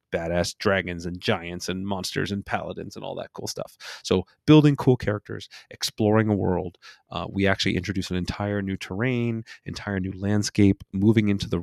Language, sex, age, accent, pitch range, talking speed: English, male, 30-49, American, 95-120 Hz, 175 wpm